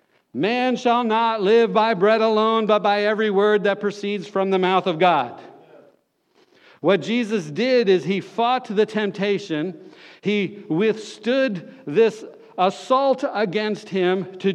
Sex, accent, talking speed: male, American, 135 wpm